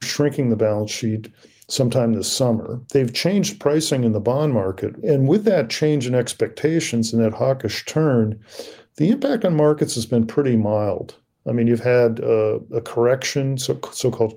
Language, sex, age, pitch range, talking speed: English, male, 50-69, 115-145 Hz, 170 wpm